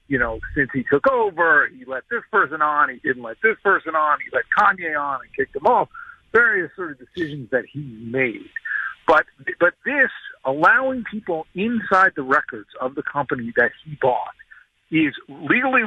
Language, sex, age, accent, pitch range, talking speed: English, male, 50-69, American, 135-200 Hz, 180 wpm